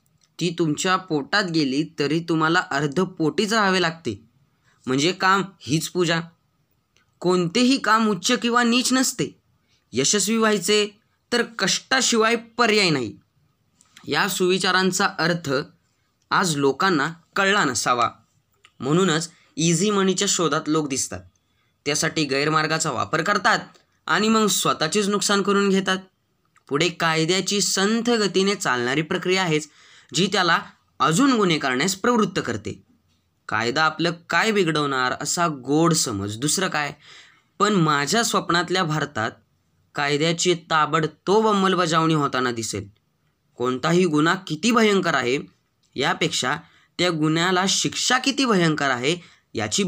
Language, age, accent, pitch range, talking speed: Marathi, 20-39, native, 145-195 Hz, 115 wpm